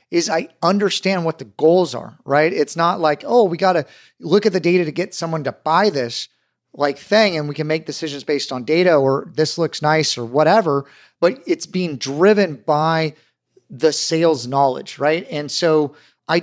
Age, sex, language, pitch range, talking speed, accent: 40-59, male, English, 145-175 Hz, 195 wpm, American